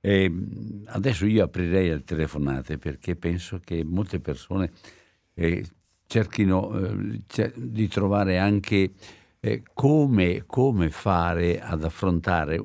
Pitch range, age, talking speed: 85-105 Hz, 60-79, 95 wpm